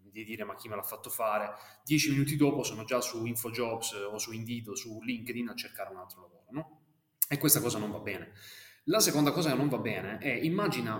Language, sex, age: Italian, male, 20-39